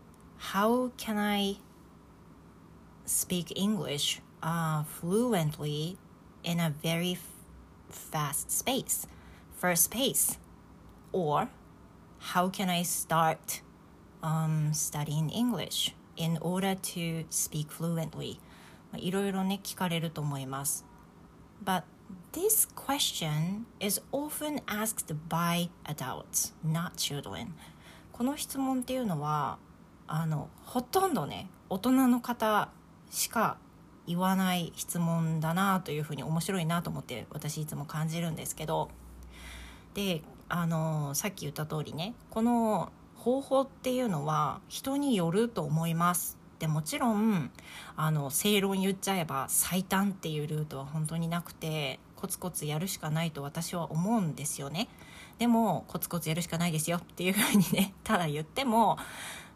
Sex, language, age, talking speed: female, English, 30-49, 40 wpm